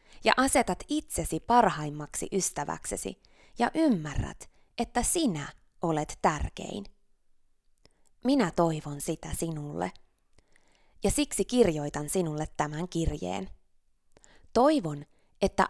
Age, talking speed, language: 20-39, 90 wpm, Finnish